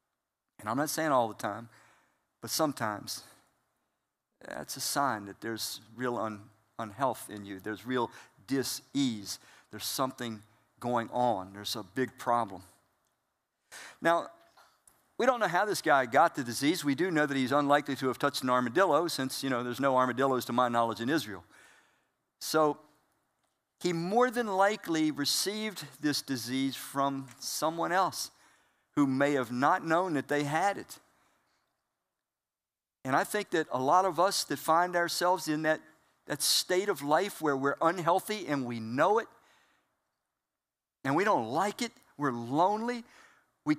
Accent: American